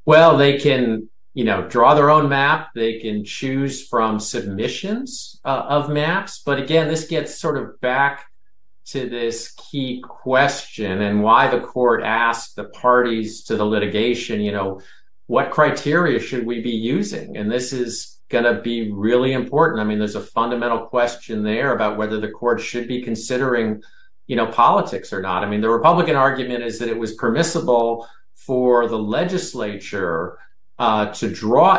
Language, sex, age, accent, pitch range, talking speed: English, male, 50-69, American, 105-130 Hz, 170 wpm